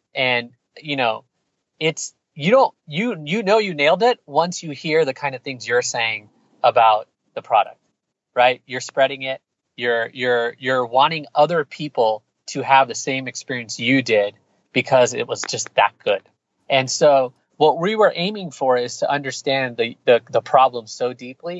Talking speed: 175 wpm